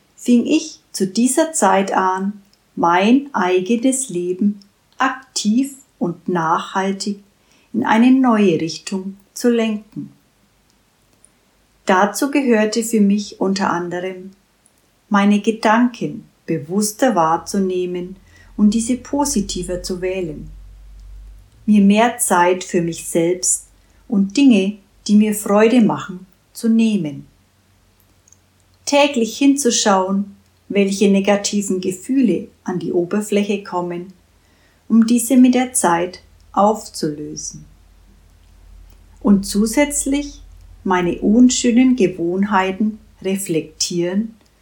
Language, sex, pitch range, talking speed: German, female, 175-230 Hz, 90 wpm